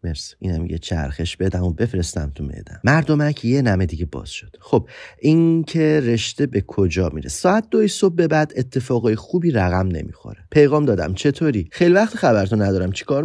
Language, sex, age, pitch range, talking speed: Persian, male, 30-49, 85-130 Hz, 170 wpm